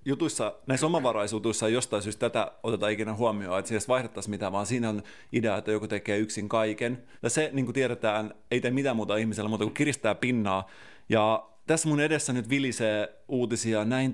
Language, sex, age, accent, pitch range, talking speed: Finnish, male, 30-49, native, 105-125 Hz, 185 wpm